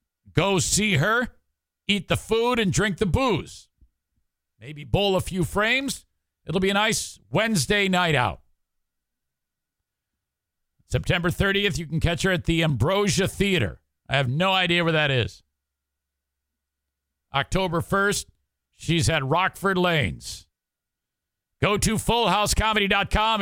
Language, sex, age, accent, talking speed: English, male, 50-69, American, 125 wpm